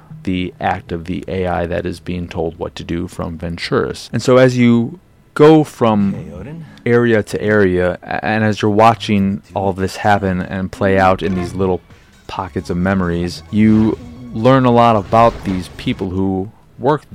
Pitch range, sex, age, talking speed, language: 95-110 Hz, male, 30-49, 170 wpm, English